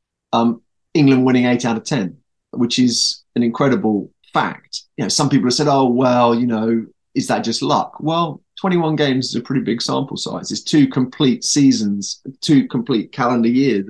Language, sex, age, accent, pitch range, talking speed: English, male, 20-39, British, 110-135 Hz, 185 wpm